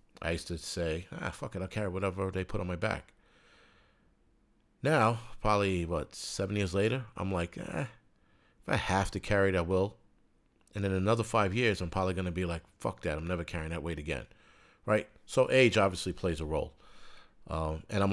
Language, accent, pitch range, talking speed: English, American, 85-105 Hz, 200 wpm